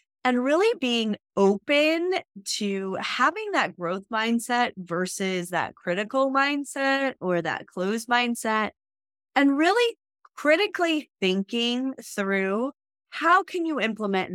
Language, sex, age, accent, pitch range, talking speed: English, female, 30-49, American, 180-295 Hz, 110 wpm